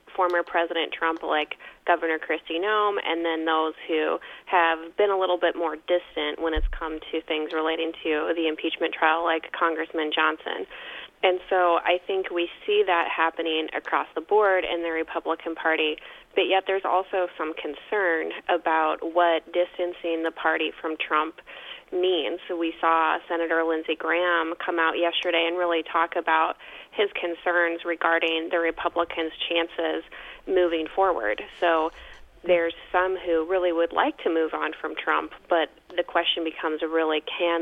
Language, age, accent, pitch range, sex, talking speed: English, 20-39, American, 160-180 Hz, female, 160 wpm